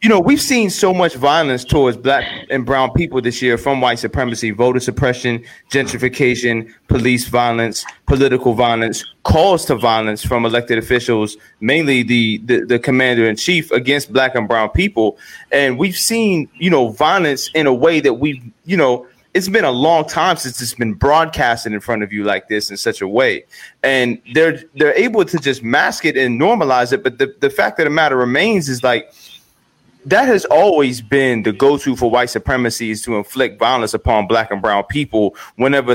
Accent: American